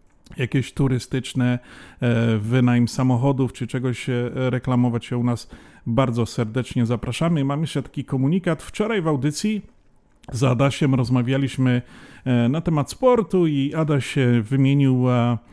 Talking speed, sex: 110 wpm, male